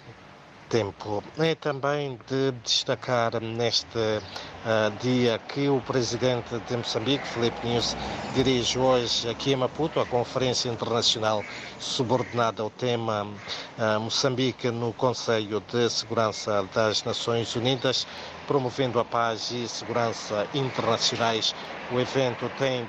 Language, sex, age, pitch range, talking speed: Portuguese, male, 50-69, 110-125 Hz, 115 wpm